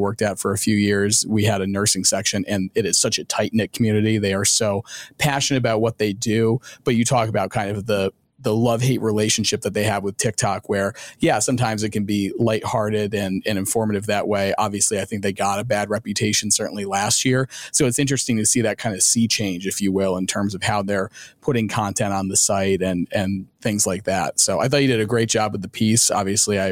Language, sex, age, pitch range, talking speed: English, male, 30-49, 100-120 Hz, 240 wpm